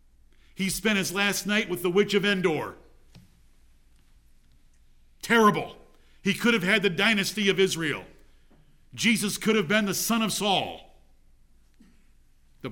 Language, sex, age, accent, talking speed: English, male, 50-69, American, 130 wpm